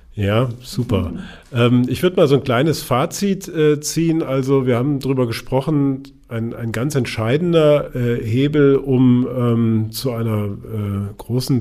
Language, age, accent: German, 40-59, German